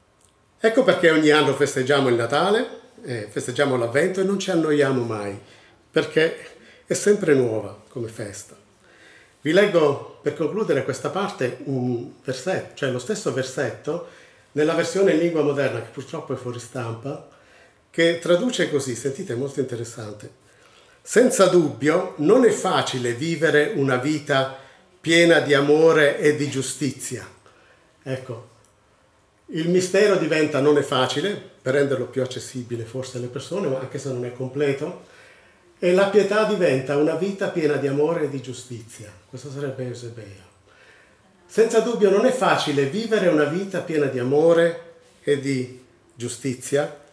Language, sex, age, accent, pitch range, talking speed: Italian, male, 50-69, native, 125-170 Hz, 145 wpm